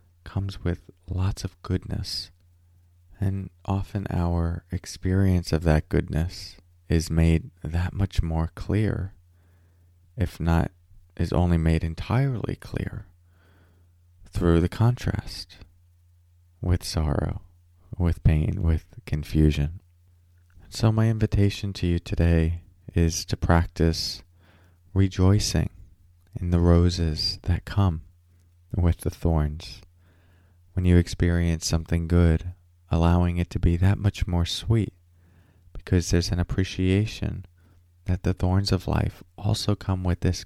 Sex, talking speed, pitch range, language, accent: male, 115 wpm, 85-95 Hz, English, American